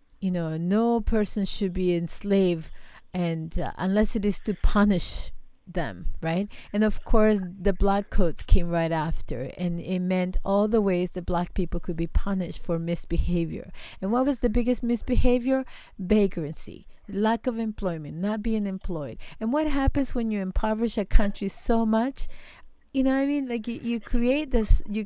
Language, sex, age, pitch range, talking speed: English, female, 40-59, 175-215 Hz, 170 wpm